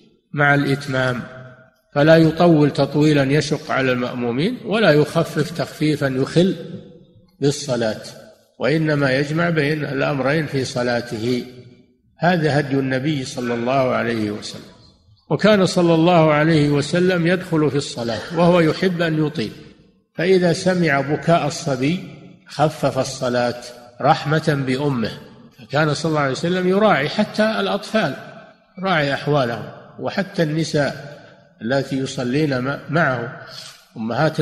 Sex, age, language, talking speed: male, 50-69, Arabic, 110 wpm